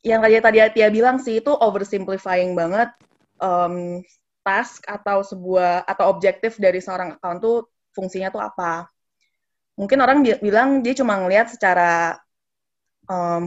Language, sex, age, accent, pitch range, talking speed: Indonesian, female, 20-39, native, 185-225 Hz, 135 wpm